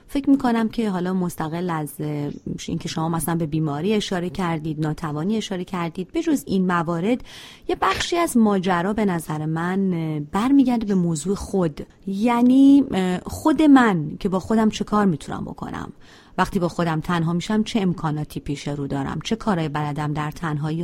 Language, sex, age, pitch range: Persian, female, 30-49, 160-215 Hz